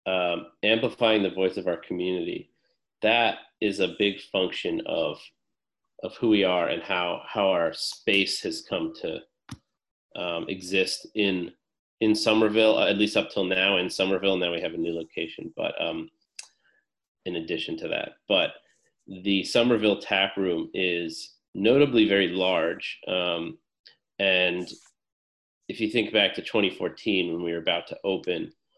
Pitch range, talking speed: 90-110 Hz, 150 wpm